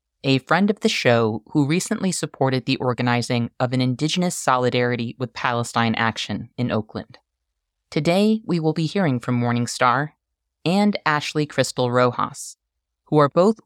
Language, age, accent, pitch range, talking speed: English, 30-49, American, 120-155 Hz, 145 wpm